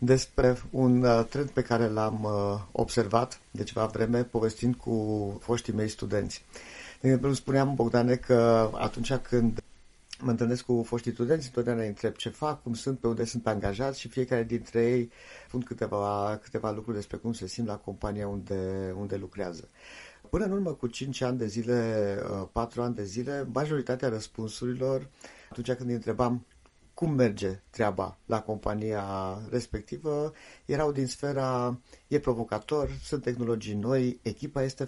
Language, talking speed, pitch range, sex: Romanian, 150 wpm, 105-130 Hz, male